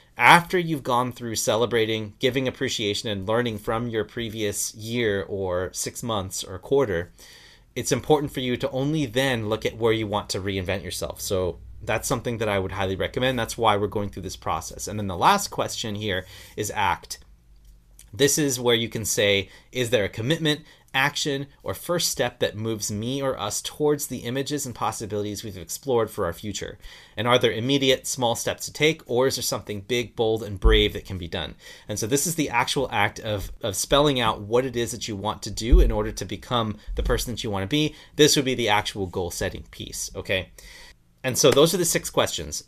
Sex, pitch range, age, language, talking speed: male, 105-135 Hz, 30-49, English, 210 wpm